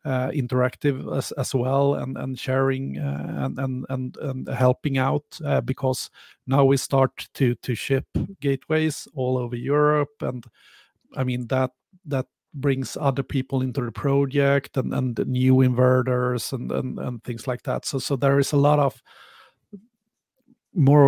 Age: 30-49